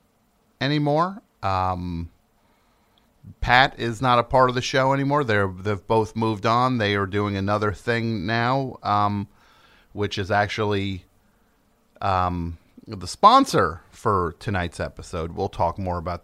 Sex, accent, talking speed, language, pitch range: male, American, 135 wpm, English, 100-135 Hz